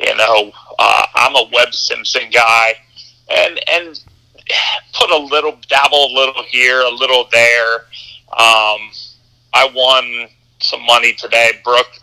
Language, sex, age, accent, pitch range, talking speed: English, male, 40-59, American, 120-145 Hz, 135 wpm